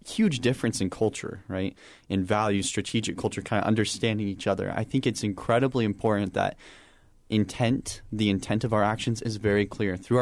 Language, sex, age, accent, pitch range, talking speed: English, male, 20-39, American, 95-115 Hz, 175 wpm